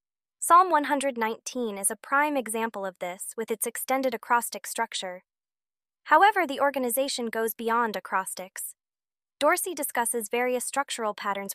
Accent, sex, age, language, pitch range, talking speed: American, female, 20-39, English, 215-270 Hz, 125 wpm